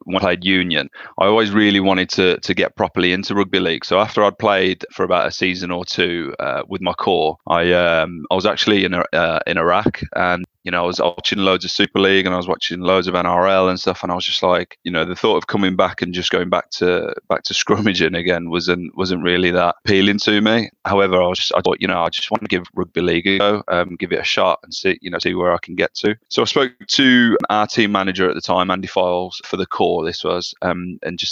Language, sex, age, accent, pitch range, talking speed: English, male, 30-49, British, 90-100 Hz, 260 wpm